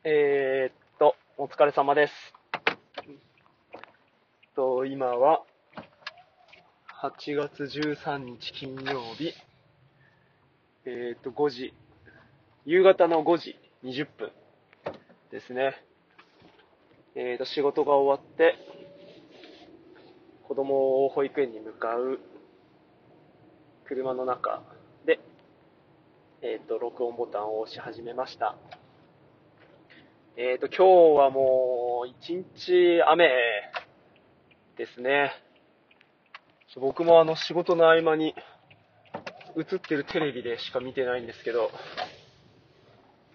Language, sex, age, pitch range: Japanese, male, 20-39, 125-165 Hz